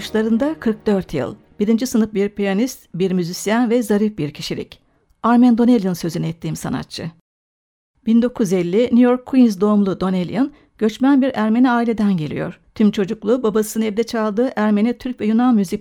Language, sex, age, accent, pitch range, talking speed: Turkish, female, 60-79, native, 210-250 Hz, 150 wpm